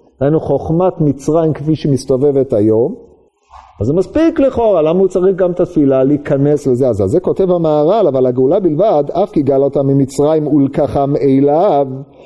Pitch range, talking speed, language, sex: 140-200 Hz, 150 wpm, Hebrew, male